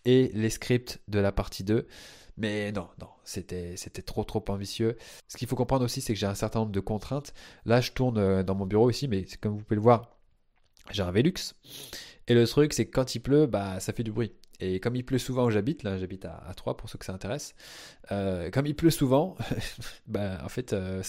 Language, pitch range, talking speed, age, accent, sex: French, 100-120 Hz, 240 wpm, 20-39, French, male